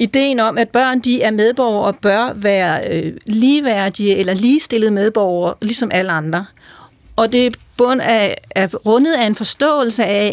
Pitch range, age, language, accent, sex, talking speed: 200-245 Hz, 40-59, Danish, native, female, 165 wpm